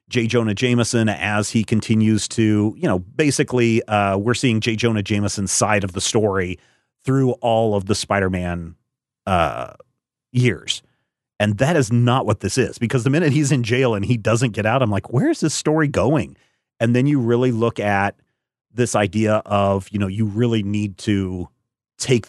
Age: 30-49